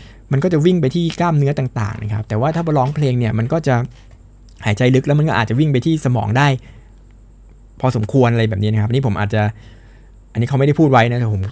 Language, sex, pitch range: Thai, male, 110-150 Hz